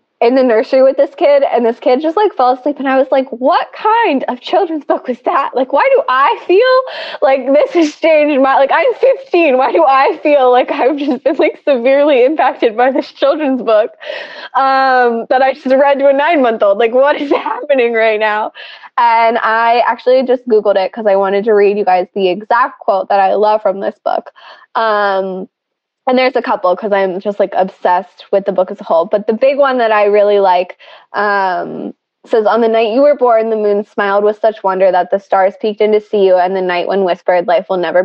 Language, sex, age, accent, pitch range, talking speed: English, female, 20-39, American, 200-280 Hz, 225 wpm